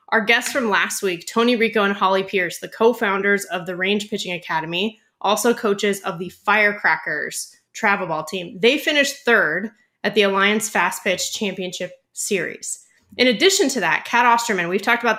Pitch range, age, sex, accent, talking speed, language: 185-225 Hz, 20-39, female, American, 175 wpm, English